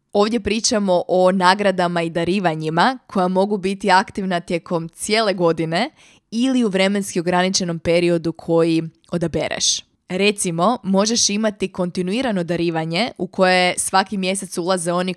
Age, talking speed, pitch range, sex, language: 20-39, 125 wpm, 175-195 Hz, female, Croatian